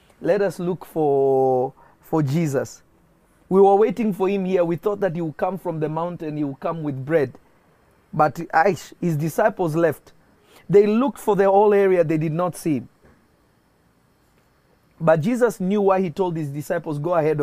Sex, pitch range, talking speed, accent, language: male, 150-195 Hz, 180 wpm, South African, English